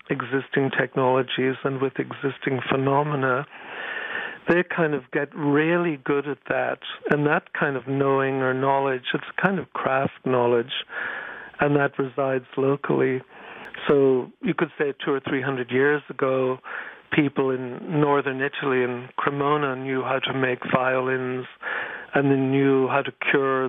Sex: male